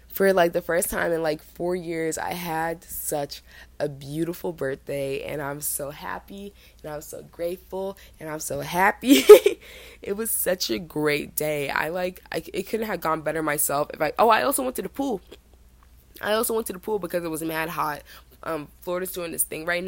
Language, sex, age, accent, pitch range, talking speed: English, female, 20-39, American, 145-185 Hz, 205 wpm